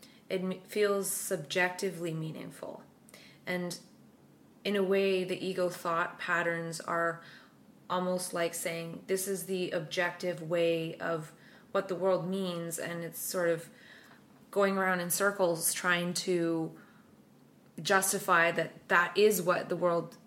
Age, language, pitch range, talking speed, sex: 20-39, English, 175-195 Hz, 125 wpm, female